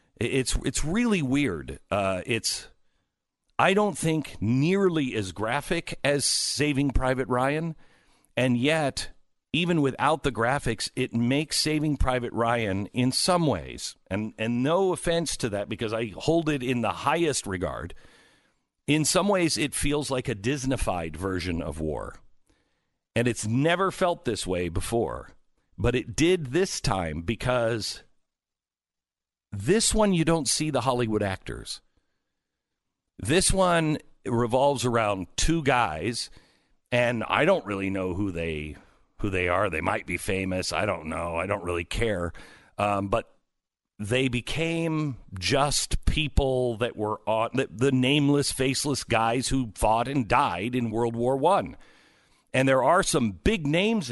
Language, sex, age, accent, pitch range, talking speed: English, male, 50-69, American, 105-150 Hz, 145 wpm